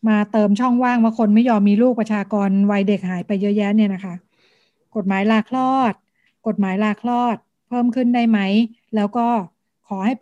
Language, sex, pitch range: Thai, female, 200-235 Hz